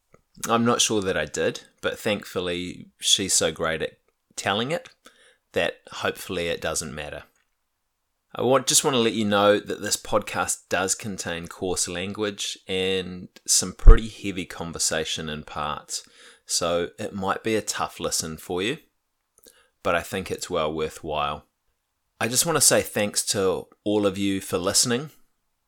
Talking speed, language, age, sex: 155 wpm, English, 20-39, male